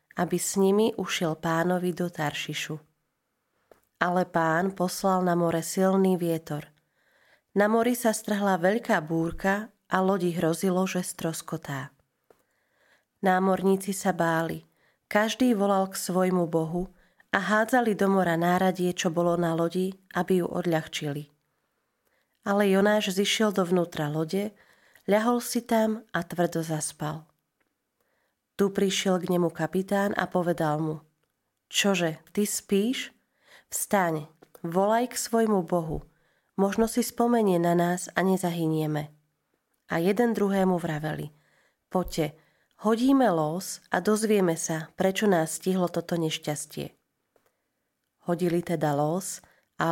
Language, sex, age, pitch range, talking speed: Slovak, female, 30-49, 160-200 Hz, 120 wpm